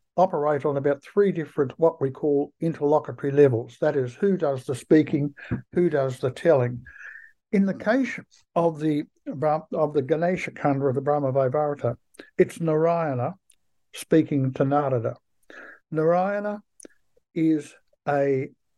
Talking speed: 120 wpm